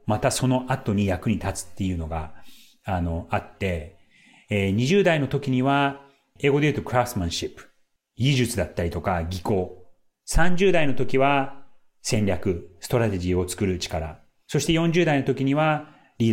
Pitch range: 100-140 Hz